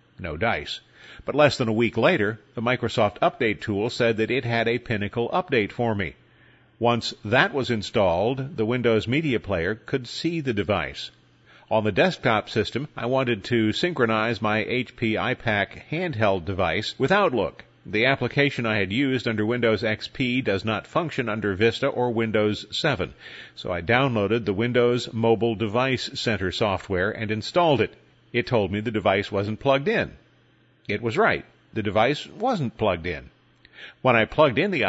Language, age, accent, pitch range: English, 50-69, American, 105-135 Hz